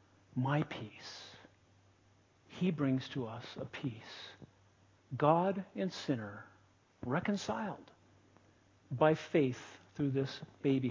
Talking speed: 95 wpm